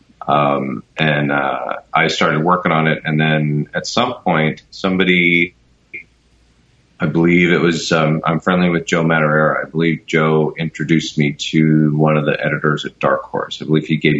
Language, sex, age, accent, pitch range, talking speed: English, male, 30-49, American, 75-85 Hz, 175 wpm